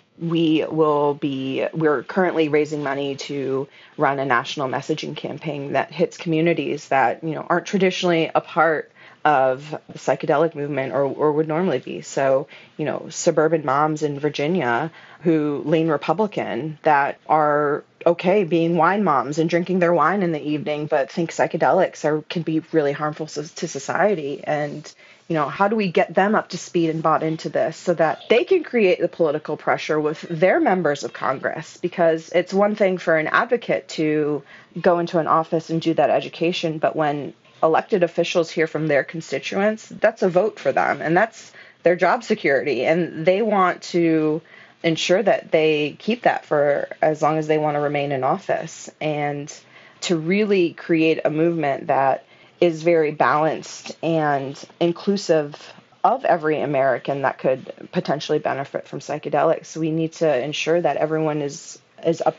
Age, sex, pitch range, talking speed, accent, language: 30-49, female, 150-180 Hz, 170 wpm, American, English